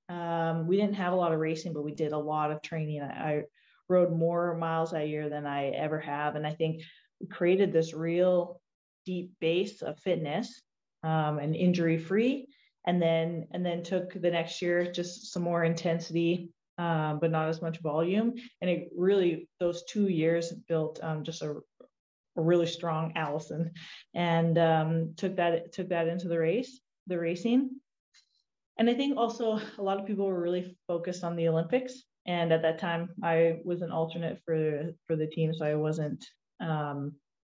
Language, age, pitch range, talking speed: English, 20-39, 160-180 Hz, 185 wpm